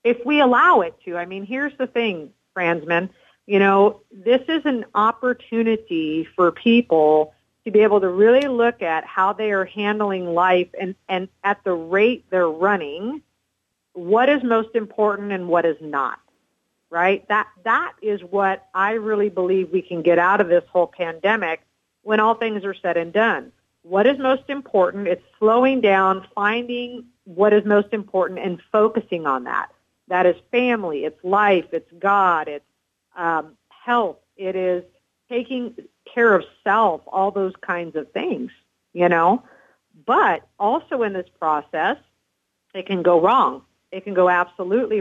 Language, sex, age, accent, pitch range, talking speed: English, female, 50-69, American, 175-225 Hz, 160 wpm